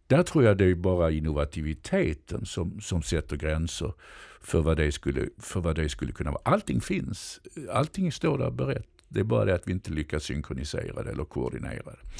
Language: Swedish